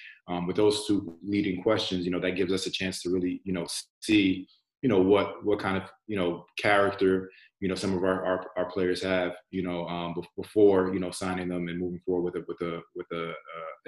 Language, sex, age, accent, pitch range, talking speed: English, male, 20-39, American, 90-100 Hz, 235 wpm